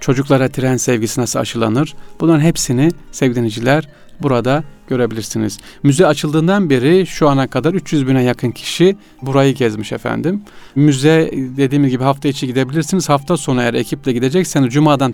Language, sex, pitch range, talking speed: Turkish, male, 125-160 Hz, 140 wpm